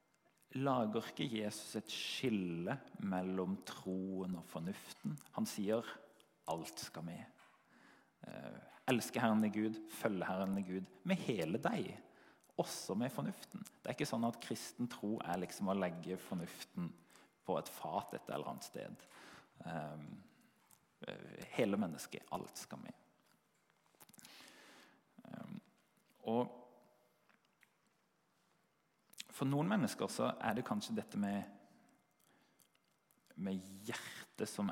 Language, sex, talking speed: English, male, 110 wpm